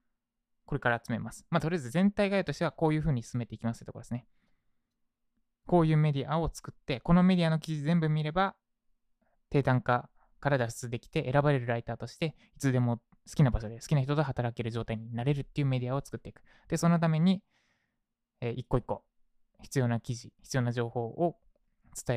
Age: 20-39